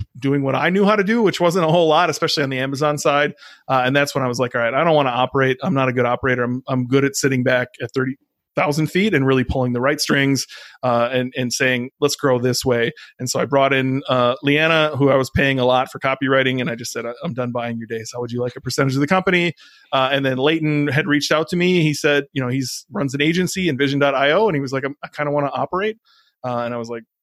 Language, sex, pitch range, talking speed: English, male, 130-155 Hz, 280 wpm